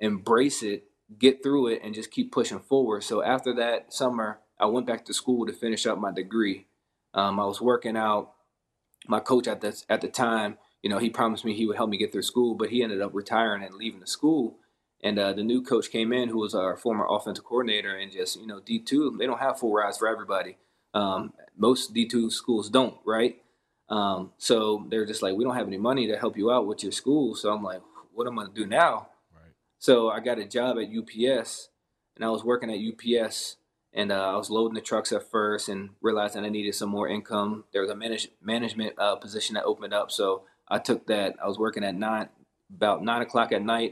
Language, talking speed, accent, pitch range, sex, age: English, 230 wpm, American, 105-125 Hz, male, 20-39